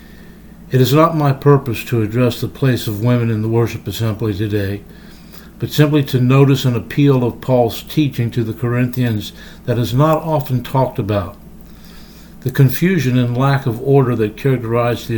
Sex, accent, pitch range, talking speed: male, American, 120-150 Hz, 170 wpm